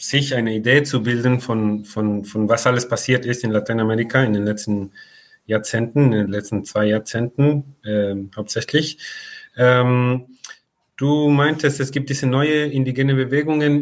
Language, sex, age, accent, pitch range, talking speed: German, male, 30-49, German, 115-140 Hz, 150 wpm